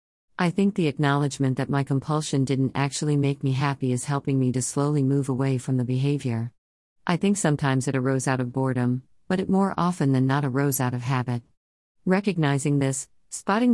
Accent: American